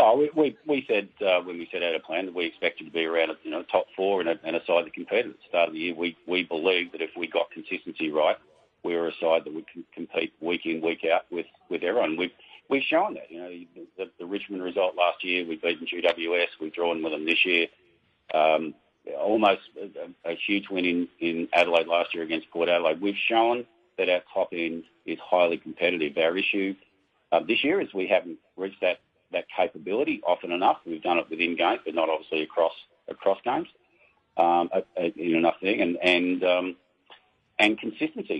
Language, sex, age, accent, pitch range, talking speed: English, male, 50-69, Australian, 85-95 Hz, 215 wpm